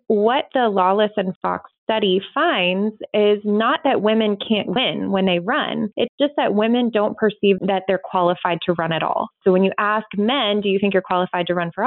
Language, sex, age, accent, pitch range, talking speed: English, female, 20-39, American, 185-225 Hz, 210 wpm